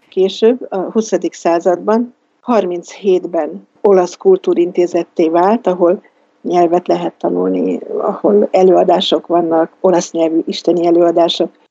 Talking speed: 95 wpm